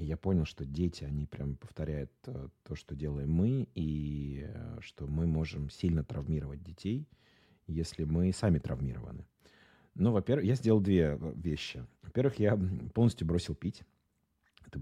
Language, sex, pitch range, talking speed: Russian, male, 75-100 Hz, 140 wpm